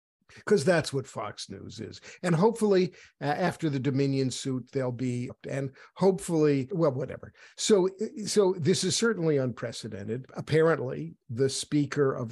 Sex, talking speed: male, 140 wpm